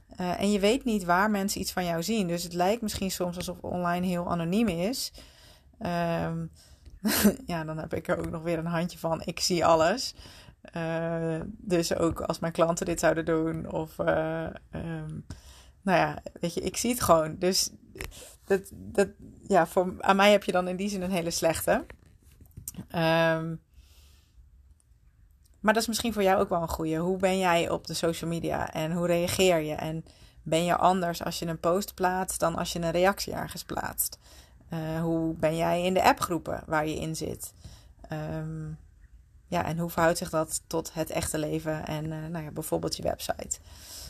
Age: 30-49